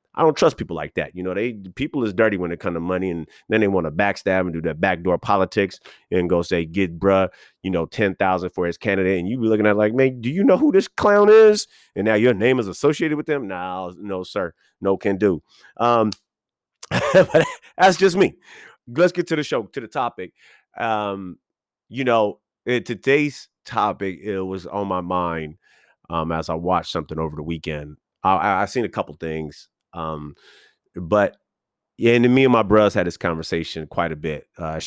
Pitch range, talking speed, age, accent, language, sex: 90-125 Hz, 210 wpm, 30-49, American, English, male